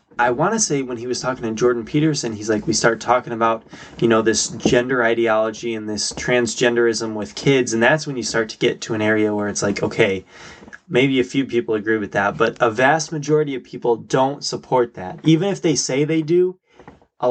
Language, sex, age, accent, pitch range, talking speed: English, male, 20-39, American, 115-155 Hz, 220 wpm